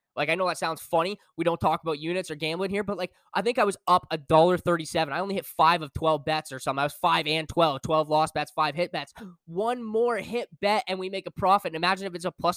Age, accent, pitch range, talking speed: 10-29, American, 145-185 Hz, 280 wpm